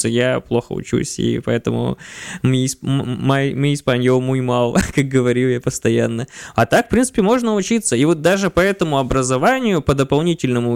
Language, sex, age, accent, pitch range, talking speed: Russian, male, 20-39, native, 135-185 Hz, 150 wpm